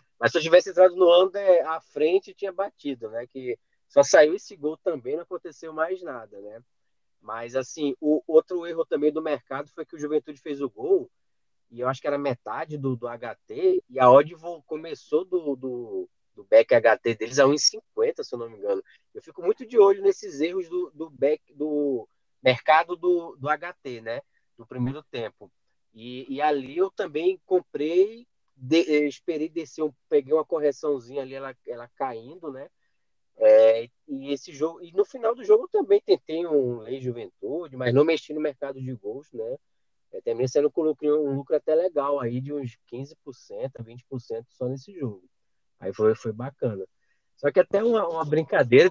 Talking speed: 180 wpm